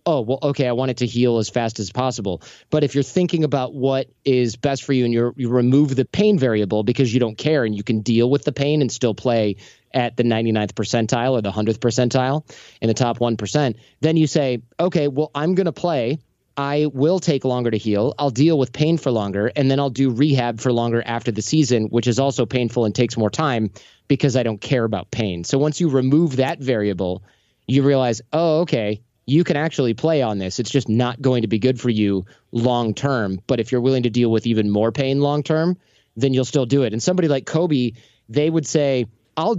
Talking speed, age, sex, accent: 225 wpm, 30-49, male, American